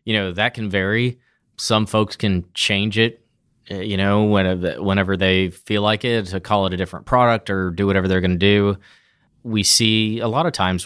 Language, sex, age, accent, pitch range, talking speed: English, male, 30-49, American, 95-115 Hz, 200 wpm